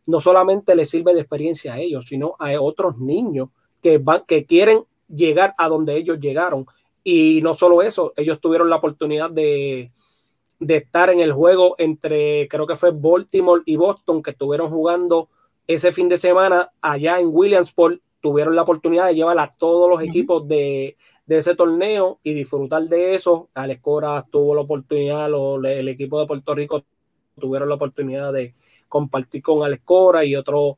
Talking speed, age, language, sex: 175 wpm, 20-39, Spanish, male